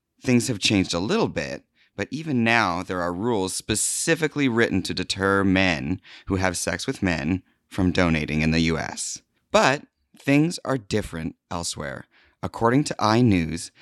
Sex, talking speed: male, 150 wpm